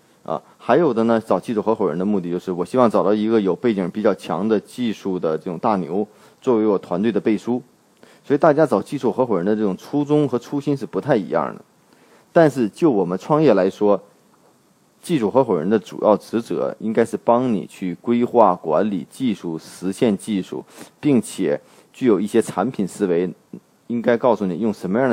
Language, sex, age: Chinese, male, 30-49